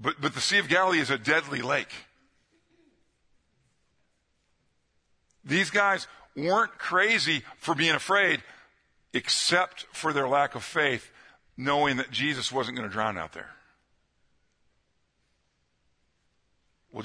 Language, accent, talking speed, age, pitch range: English, American, 115 wpm, 50-69, 125-160 Hz